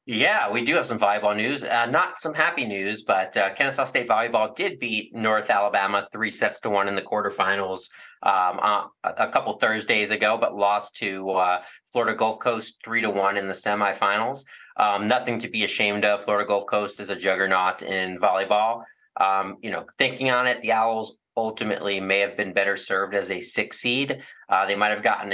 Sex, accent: male, American